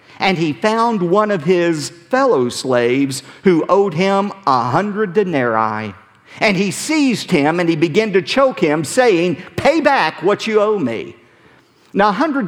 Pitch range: 135-200 Hz